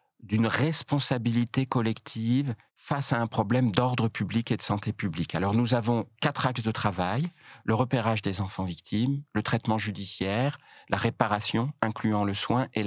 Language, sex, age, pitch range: French, male, 50-69, 105-125 Hz